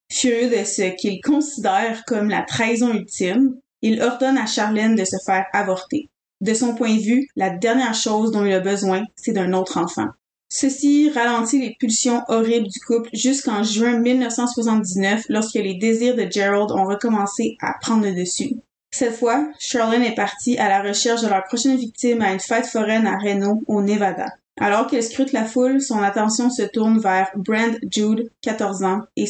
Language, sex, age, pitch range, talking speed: French, female, 20-39, 200-240 Hz, 180 wpm